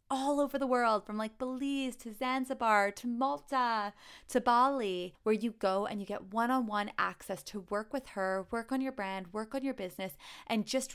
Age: 20-39